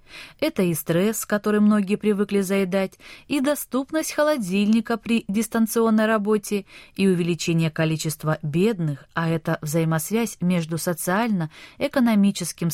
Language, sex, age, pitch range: Russian, female, 20-39, 165-220 Hz